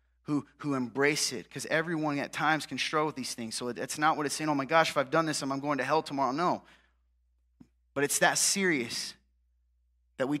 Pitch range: 135-205 Hz